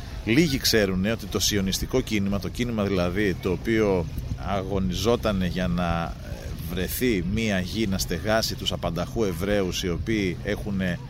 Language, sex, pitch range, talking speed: Greek, male, 95-120 Hz, 135 wpm